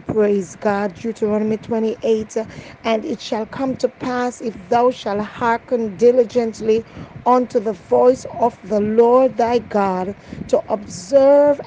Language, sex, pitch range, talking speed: English, female, 215-250 Hz, 130 wpm